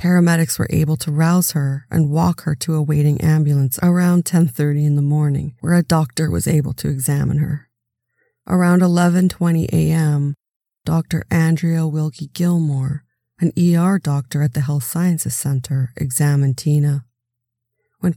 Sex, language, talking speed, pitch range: female, English, 145 wpm, 140-165 Hz